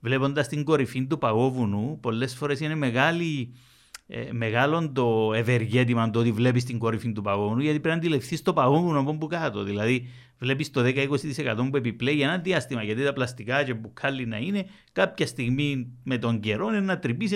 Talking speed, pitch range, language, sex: 180 wpm, 120-165 Hz, Greek, male